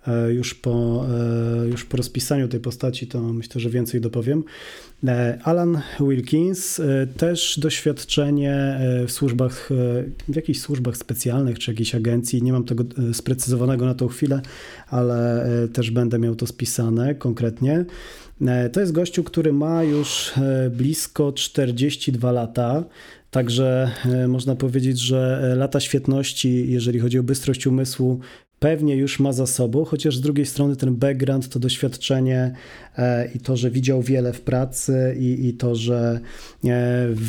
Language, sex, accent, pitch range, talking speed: Polish, male, native, 125-140 Hz, 135 wpm